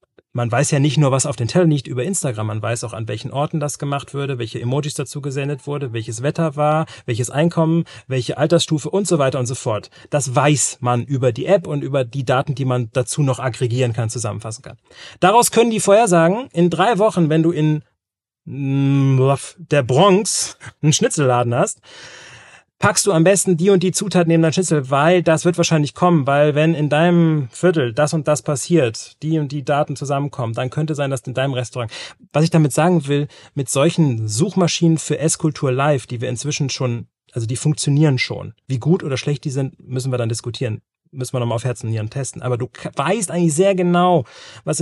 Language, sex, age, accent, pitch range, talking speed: German, male, 40-59, German, 130-165 Hz, 205 wpm